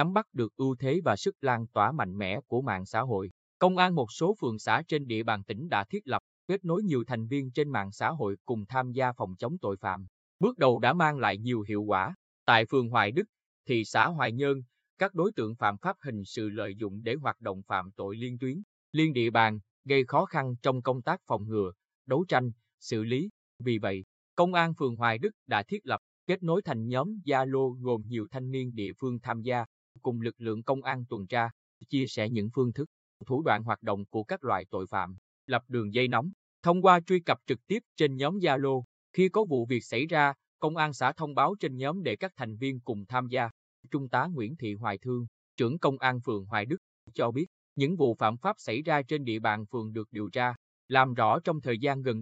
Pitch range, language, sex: 110-150 Hz, Vietnamese, male